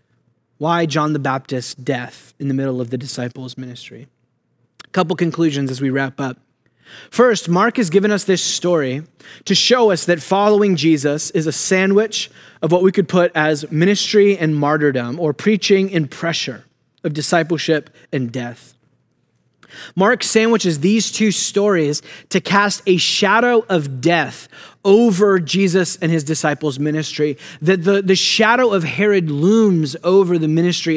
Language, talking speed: English, 155 wpm